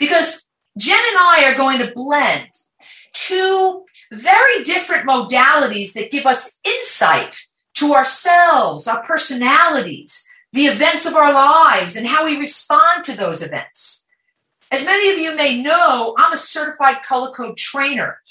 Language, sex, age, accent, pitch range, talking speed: English, female, 40-59, American, 230-325 Hz, 145 wpm